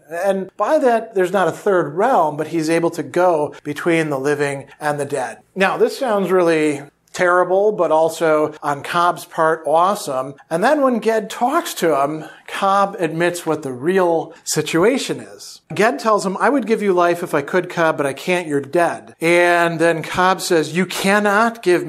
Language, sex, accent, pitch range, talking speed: English, male, American, 155-190 Hz, 185 wpm